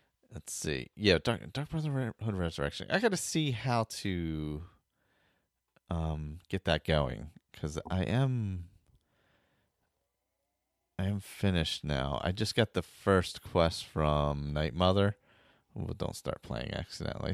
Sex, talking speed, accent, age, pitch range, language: male, 125 wpm, American, 30-49, 75-105 Hz, English